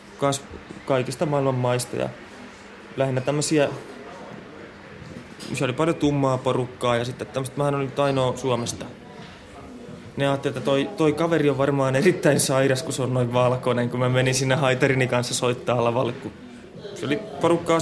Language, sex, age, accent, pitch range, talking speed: Finnish, male, 20-39, native, 120-145 Hz, 150 wpm